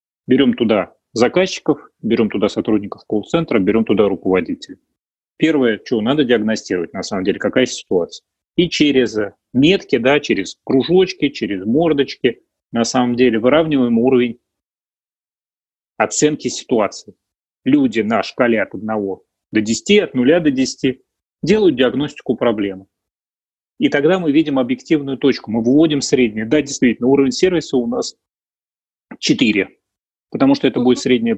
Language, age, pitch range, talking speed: Russian, 30-49, 115-160 Hz, 130 wpm